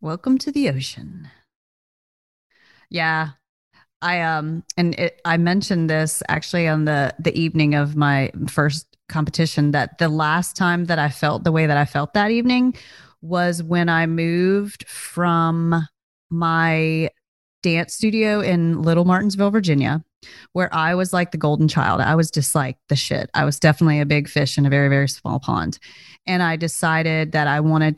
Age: 30-49